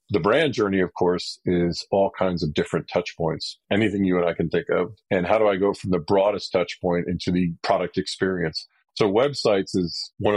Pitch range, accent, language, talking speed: 85-100 Hz, American, English, 215 wpm